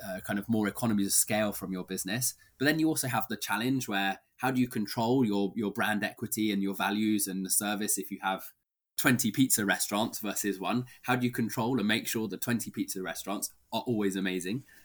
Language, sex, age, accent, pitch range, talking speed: English, male, 20-39, British, 100-120 Hz, 220 wpm